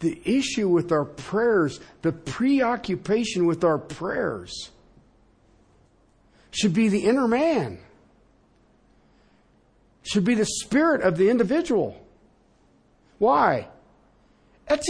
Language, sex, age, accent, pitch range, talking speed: English, male, 50-69, American, 115-165 Hz, 95 wpm